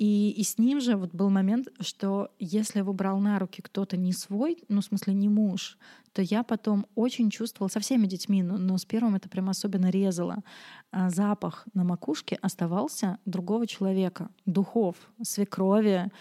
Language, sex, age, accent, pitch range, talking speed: Russian, female, 20-39, native, 185-220 Hz, 175 wpm